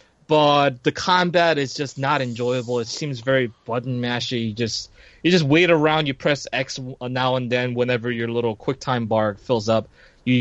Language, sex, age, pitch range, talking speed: English, male, 20-39, 115-145 Hz, 180 wpm